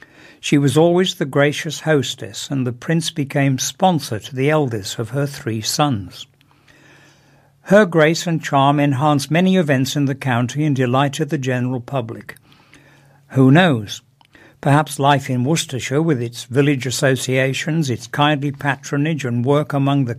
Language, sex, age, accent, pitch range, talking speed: English, male, 60-79, British, 130-150 Hz, 150 wpm